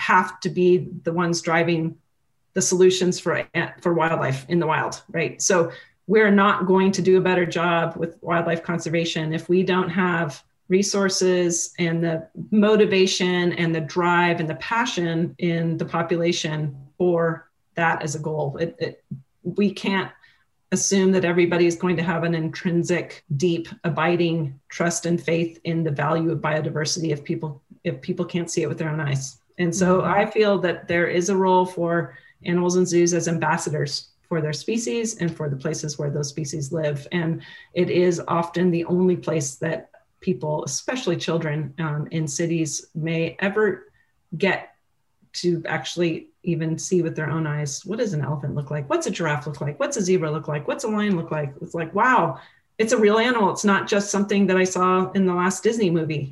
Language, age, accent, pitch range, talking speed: English, 30-49, American, 160-180 Hz, 185 wpm